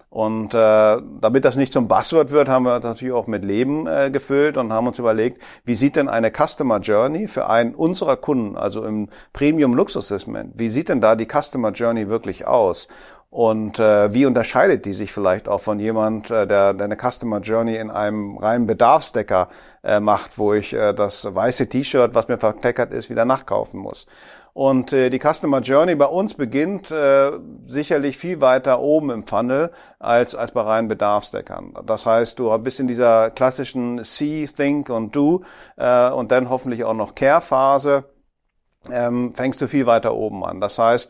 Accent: German